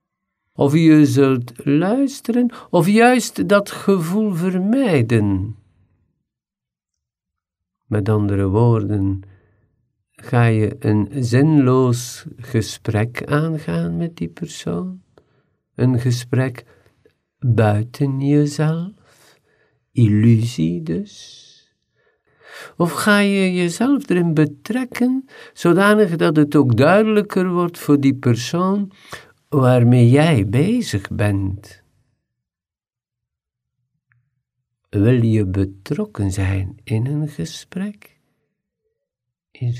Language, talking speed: Dutch, 80 wpm